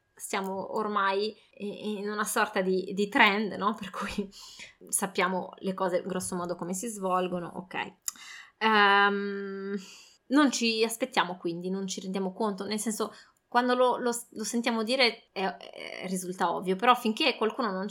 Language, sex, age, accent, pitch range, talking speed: Italian, female, 20-39, native, 190-220 Hz, 150 wpm